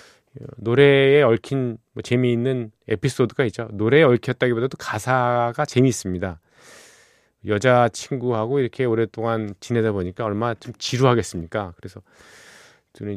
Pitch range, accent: 100-130 Hz, native